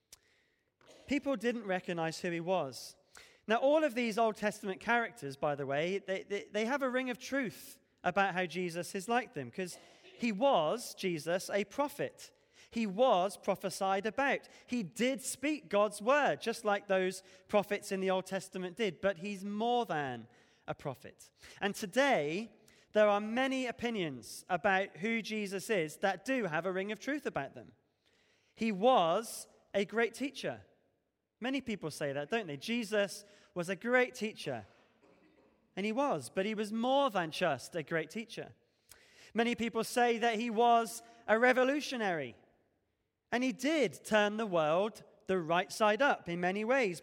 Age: 20-39